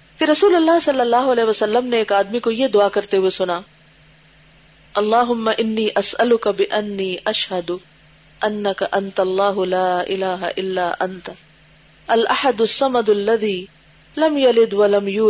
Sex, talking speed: female, 100 wpm